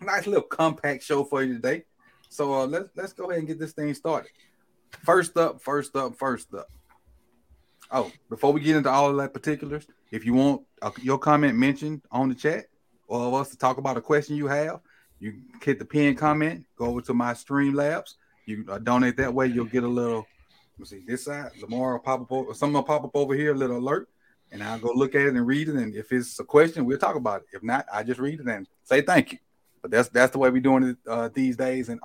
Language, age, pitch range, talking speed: English, 30-49, 125-145 Hz, 245 wpm